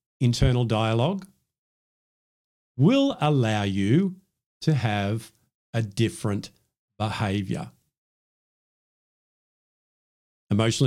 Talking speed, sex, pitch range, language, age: 60 wpm, male, 115-145 Hz, English, 50-69